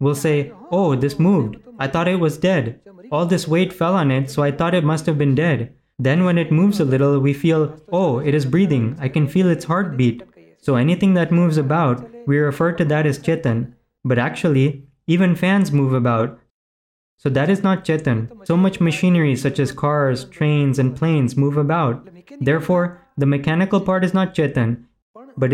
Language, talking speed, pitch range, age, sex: Gujarati, 195 wpm, 135-170 Hz, 20-39, male